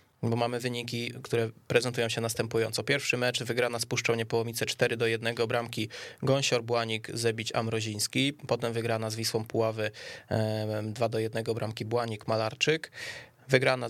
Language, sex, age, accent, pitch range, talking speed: Polish, male, 20-39, native, 110-125 Hz, 145 wpm